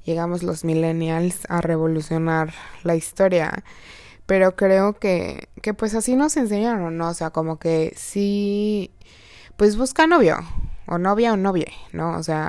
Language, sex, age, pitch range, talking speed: Spanish, female, 20-39, 160-200 Hz, 155 wpm